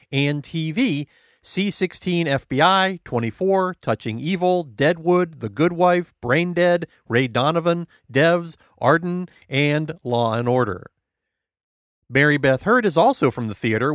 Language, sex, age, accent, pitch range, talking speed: English, male, 40-59, American, 120-175 Hz, 115 wpm